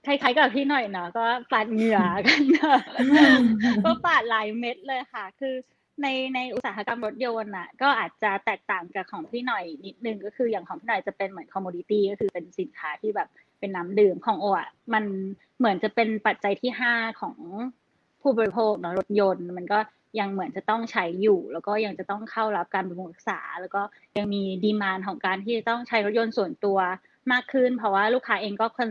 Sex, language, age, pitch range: female, Thai, 20-39, 195-240 Hz